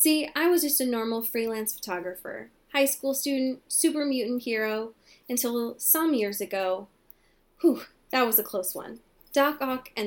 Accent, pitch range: American, 200-255 Hz